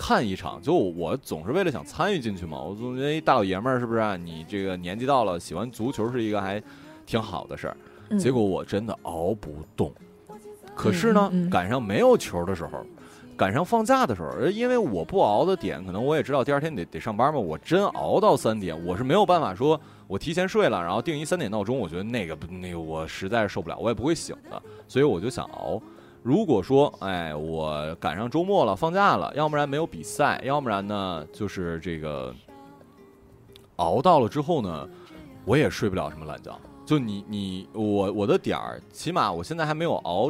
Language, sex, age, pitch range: Chinese, male, 20-39, 95-155 Hz